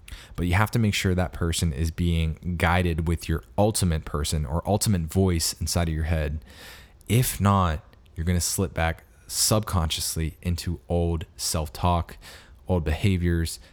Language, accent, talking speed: English, American, 150 wpm